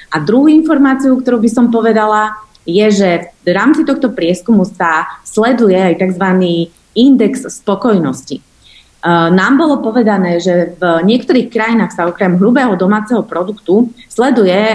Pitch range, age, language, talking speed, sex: 180-245 Hz, 30-49, Slovak, 135 wpm, female